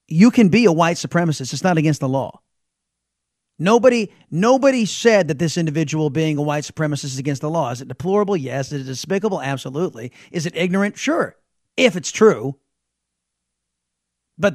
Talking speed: 170 wpm